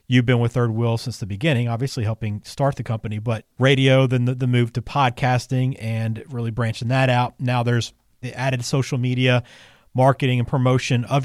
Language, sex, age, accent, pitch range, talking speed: English, male, 40-59, American, 120-145 Hz, 190 wpm